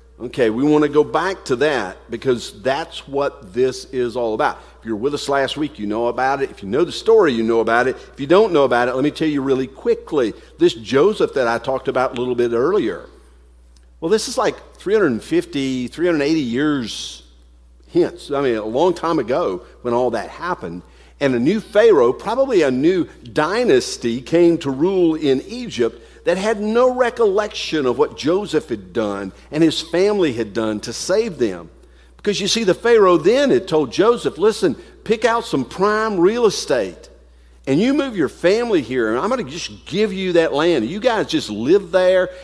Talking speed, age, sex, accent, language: 200 wpm, 50-69, male, American, English